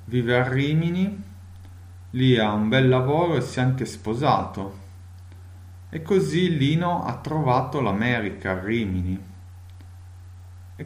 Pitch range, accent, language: 90-120 Hz, native, Italian